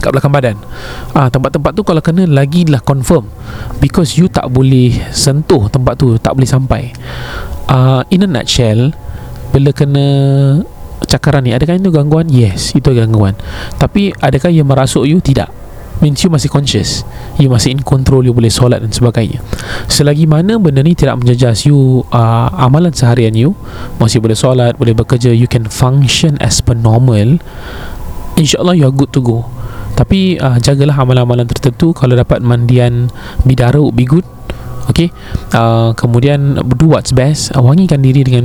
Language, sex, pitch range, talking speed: Malay, male, 115-140 Hz, 160 wpm